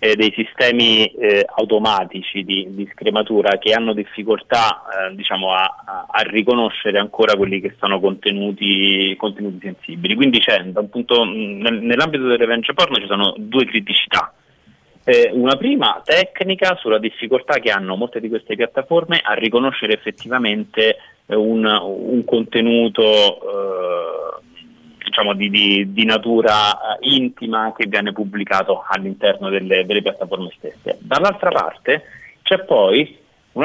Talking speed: 130 wpm